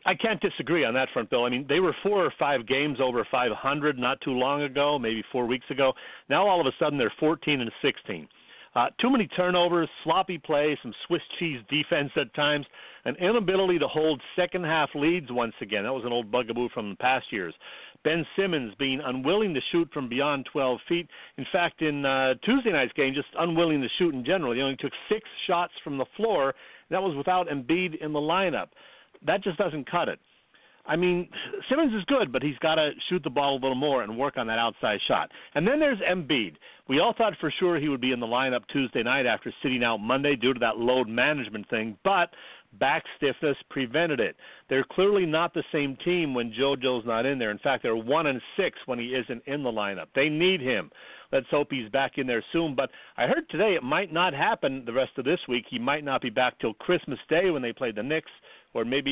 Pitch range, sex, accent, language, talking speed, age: 130-175 Hz, male, American, English, 220 wpm, 50-69